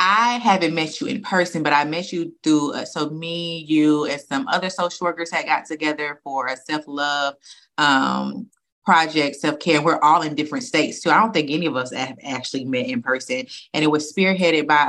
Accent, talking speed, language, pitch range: American, 215 wpm, English, 150-180 Hz